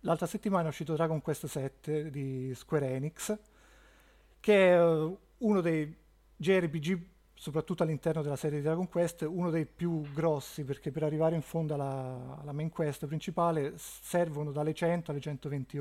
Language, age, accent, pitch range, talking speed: Italian, 30-49, native, 140-165 Hz, 155 wpm